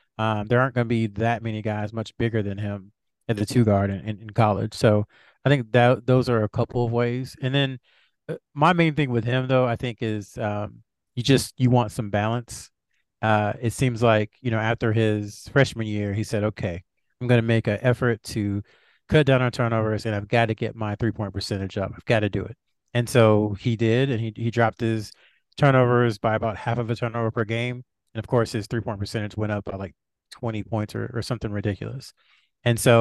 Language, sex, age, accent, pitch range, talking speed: English, male, 30-49, American, 105-120 Hz, 225 wpm